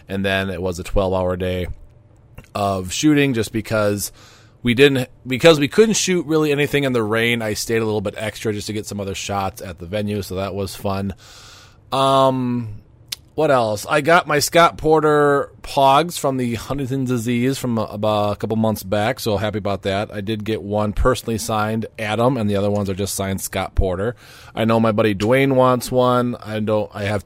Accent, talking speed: American, 200 wpm